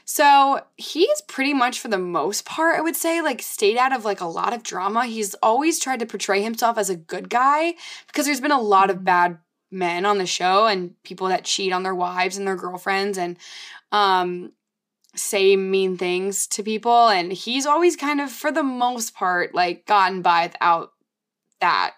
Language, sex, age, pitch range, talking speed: English, female, 20-39, 190-275 Hz, 195 wpm